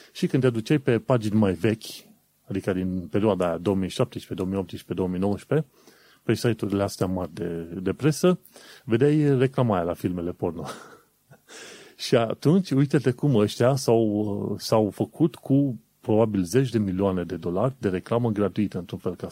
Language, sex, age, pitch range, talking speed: Romanian, male, 30-49, 95-130 Hz, 150 wpm